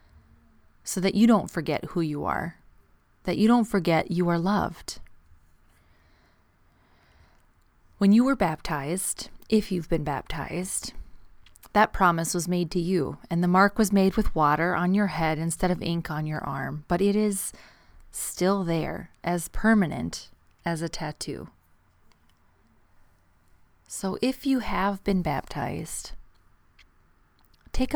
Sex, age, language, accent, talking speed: female, 30-49, English, American, 135 wpm